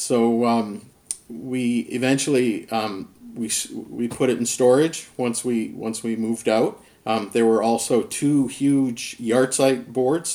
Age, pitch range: 50-69, 110-130 Hz